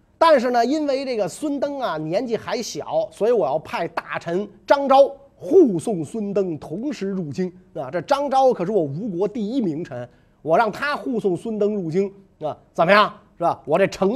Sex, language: male, Chinese